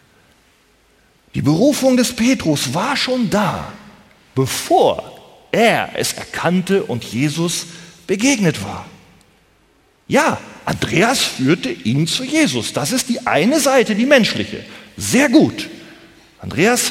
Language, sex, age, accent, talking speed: German, male, 40-59, German, 110 wpm